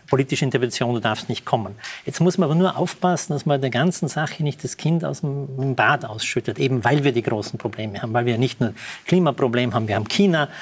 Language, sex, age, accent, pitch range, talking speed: German, male, 40-59, Austrian, 130-165 Hz, 225 wpm